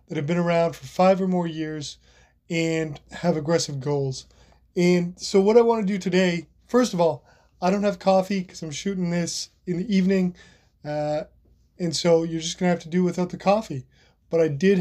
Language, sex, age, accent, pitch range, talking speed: English, male, 20-39, American, 160-190 Hz, 205 wpm